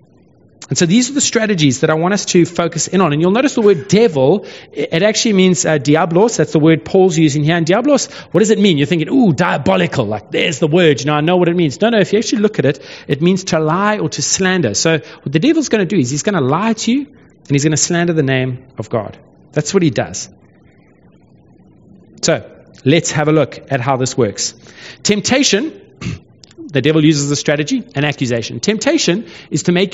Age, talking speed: 30-49, 230 wpm